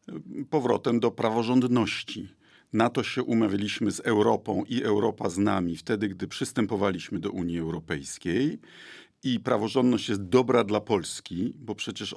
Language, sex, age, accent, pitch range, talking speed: Polish, male, 50-69, native, 100-130 Hz, 135 wpm